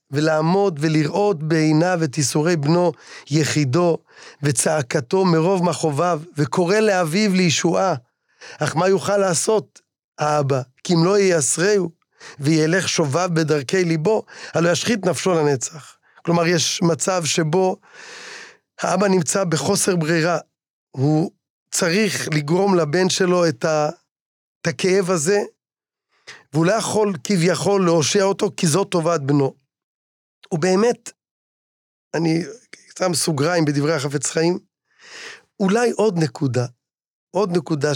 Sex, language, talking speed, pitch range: male, Hebrew, 105 wpm, 150-185 Hz